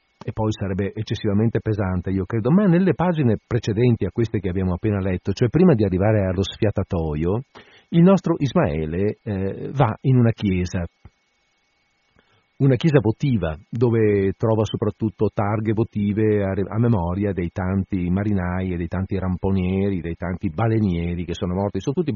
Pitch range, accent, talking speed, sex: 90-120 Hz, native, 150 wpm, male